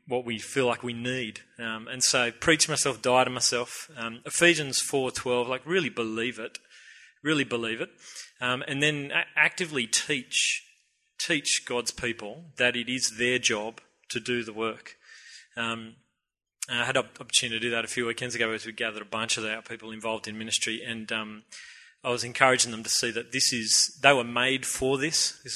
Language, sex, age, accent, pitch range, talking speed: English, male, 30-49, Australian, 115-130 Hz, 195 wpm